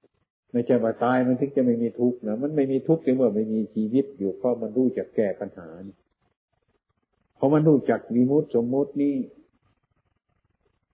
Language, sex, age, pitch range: Thai, male, 60-79, 105-135 Hz